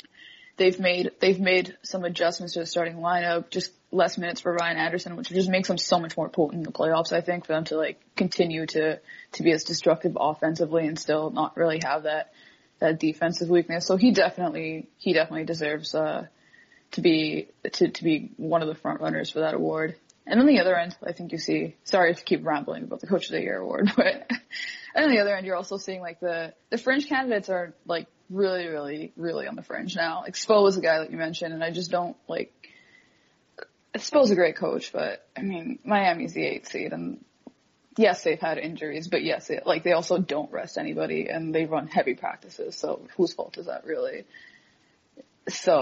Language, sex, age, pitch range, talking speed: English, female, 20-39, 165-205 Hz, 210 wpm